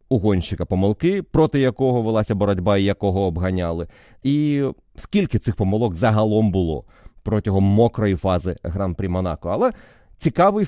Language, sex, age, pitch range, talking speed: Ukrainian, male, 30-49, 100-135 Hz, 130 wpm